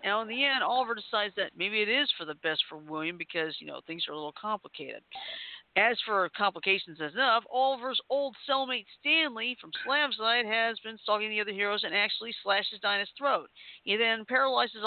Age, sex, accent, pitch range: 50-69, female, American, 195-265 Hz